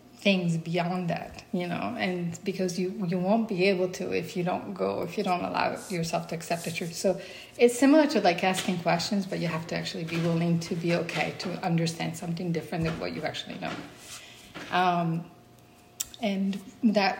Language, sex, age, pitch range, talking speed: English, female, 30-49, 165-195 Hz, 190 wpm